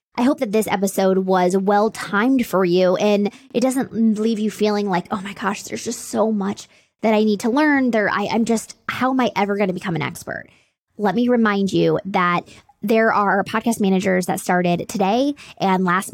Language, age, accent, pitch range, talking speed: English, 20-39, American, 190-235 Hz, 200 wpm